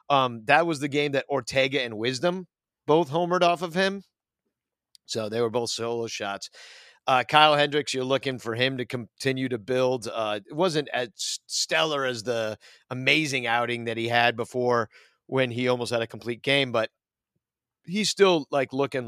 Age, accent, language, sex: 40-59, American, English, male